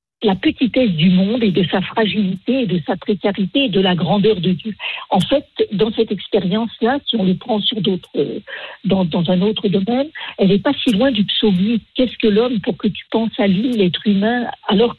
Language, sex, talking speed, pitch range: French, female, 210 wpm, 190-245 Hz